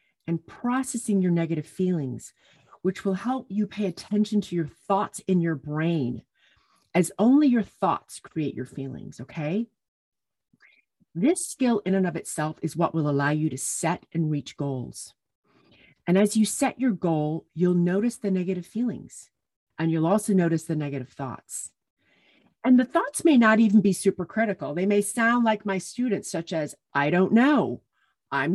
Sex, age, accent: female, 40-59, American